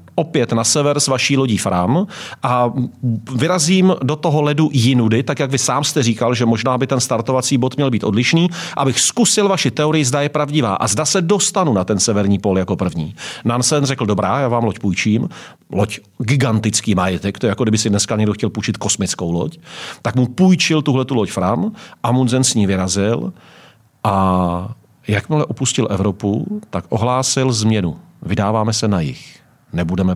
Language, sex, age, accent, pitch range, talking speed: Czech, male, 40-59, native, 110-145 Hz, 175 wpm